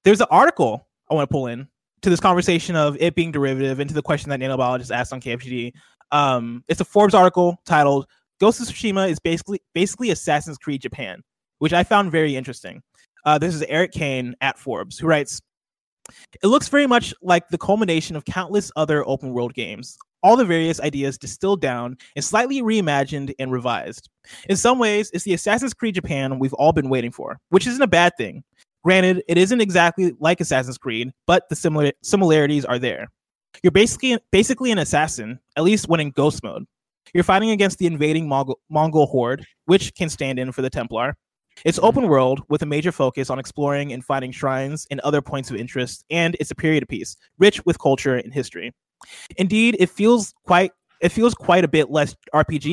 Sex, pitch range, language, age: male, 135-185 Hz, English, 20-39